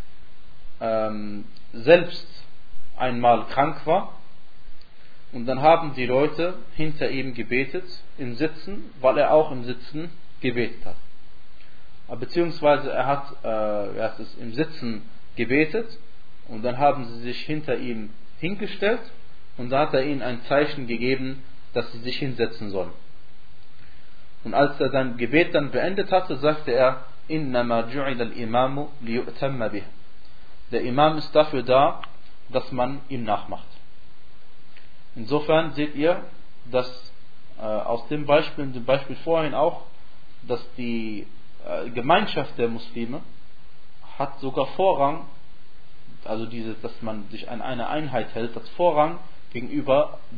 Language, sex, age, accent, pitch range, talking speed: German, male, 40-59, German, 115-150 Hz, 130 wpm